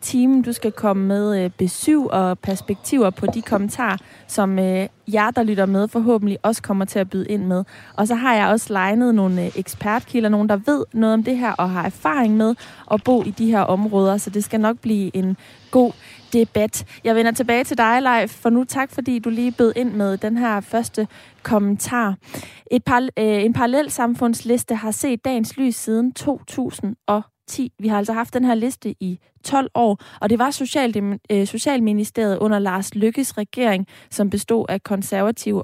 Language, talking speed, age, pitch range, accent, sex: Danish, 180 wpm, 20-39, 195-240 Hz, native, female